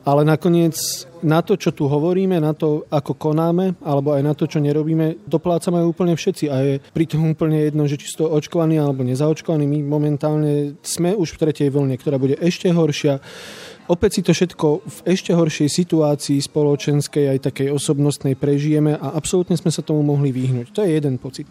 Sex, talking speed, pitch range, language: male, 180 wpm, 150-180 Hz, Slovak